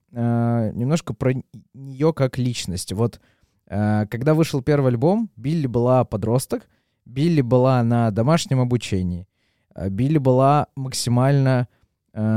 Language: Russian